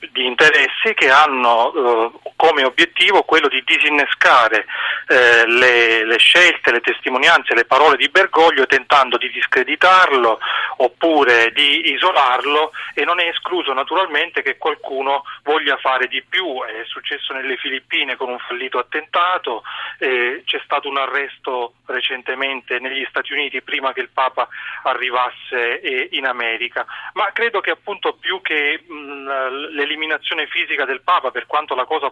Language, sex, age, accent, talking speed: Italian, male, 30-49, native, 140 wpm